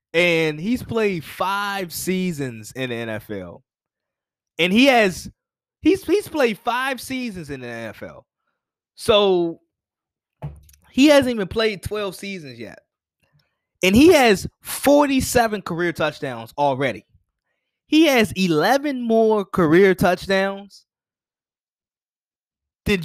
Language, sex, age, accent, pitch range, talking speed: English, male, 20-39, American, 140-200 Hz, 105 wpm